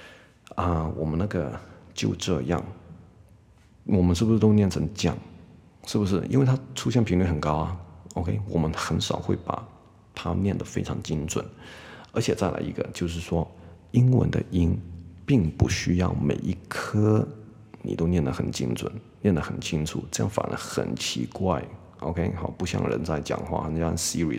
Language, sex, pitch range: Chinese, male, 85-105 Hz